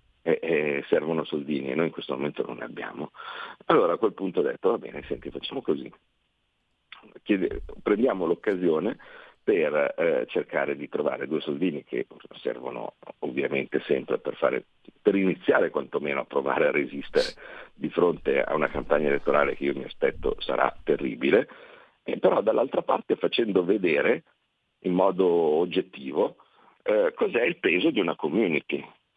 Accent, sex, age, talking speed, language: native, male, 50-69, 150 wpm, Italian